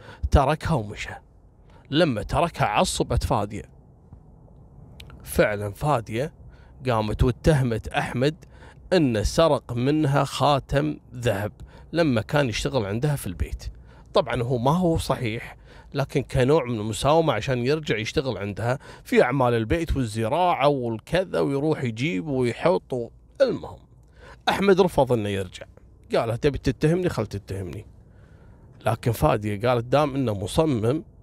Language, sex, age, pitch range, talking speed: Arabic, male, 30-49, 110-145 Hz, 115 wpm